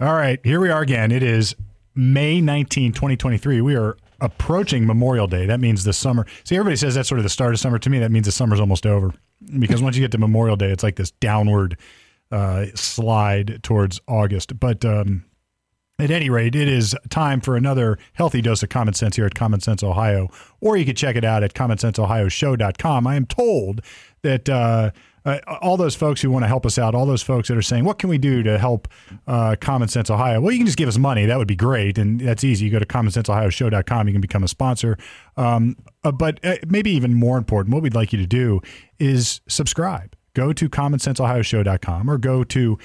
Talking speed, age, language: 220 wpm, 40-59, English